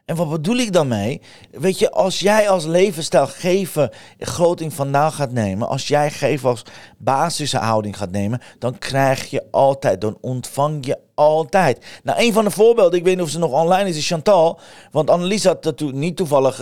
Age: 40-59